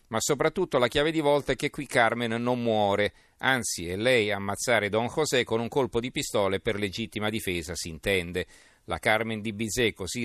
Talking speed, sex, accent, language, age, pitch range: 195 wpm, male, native, Italian, 40-59, 100-125 Hz